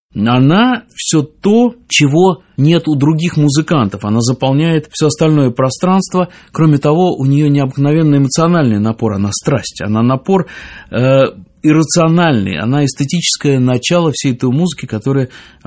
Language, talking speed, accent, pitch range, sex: Russian, 125 wpm, native, 130-170 Hz, male